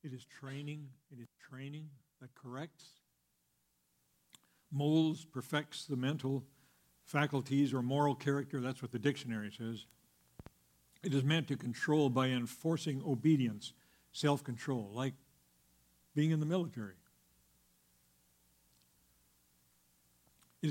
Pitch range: 110-140 Hz